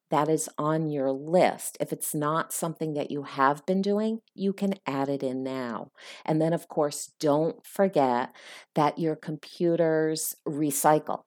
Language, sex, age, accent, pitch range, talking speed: English, female, 50-69, American, 140-180 Hz, 160 wpm